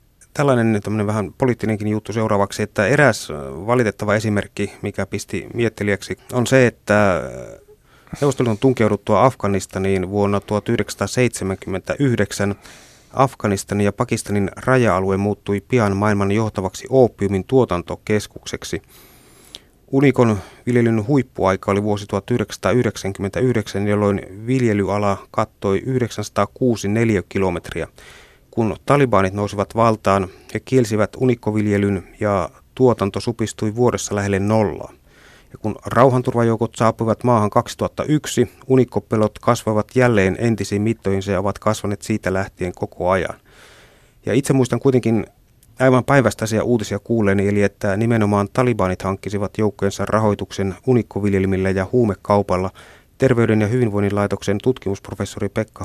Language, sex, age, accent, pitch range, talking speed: Finnish, male, 30-49, native, 100-120 Hz, 105 wpm